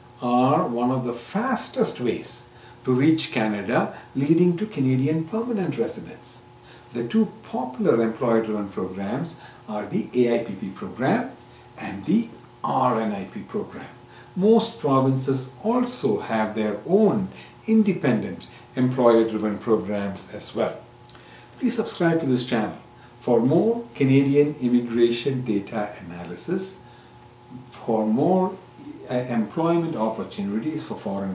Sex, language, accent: male, English, Indian